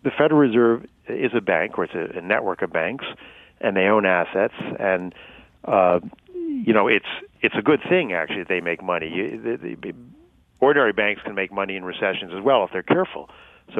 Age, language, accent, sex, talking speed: 50-69, English, American, male, 185 wpm